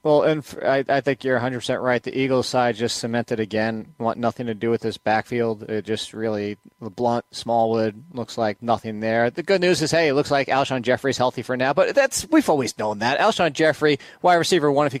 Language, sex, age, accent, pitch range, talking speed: English, male, 30-49, American, 125-175 Hz, 230 wpm